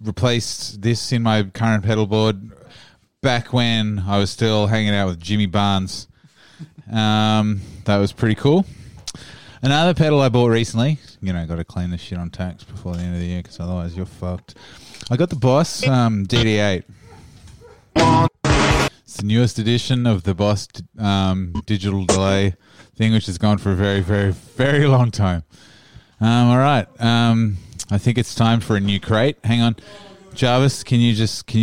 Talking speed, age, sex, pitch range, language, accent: 170 wpm, 20-39, male, 100-130 Hz, English, Australian